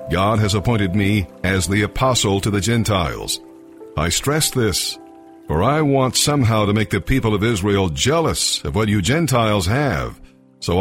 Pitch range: 100-125 Hz